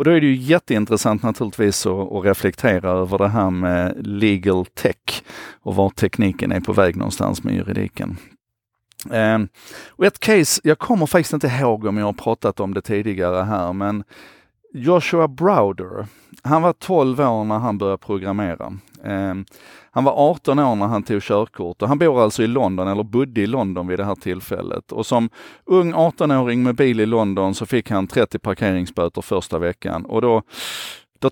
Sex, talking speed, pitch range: male, 180 wpm, 95-125 Hz